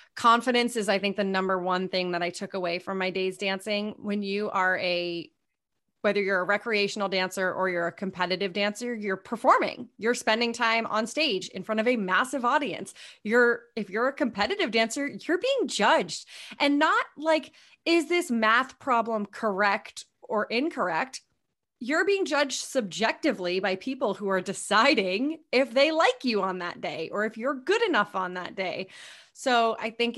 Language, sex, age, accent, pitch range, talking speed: English, female, 30-49, American, 190-250 Hz, 175 wpm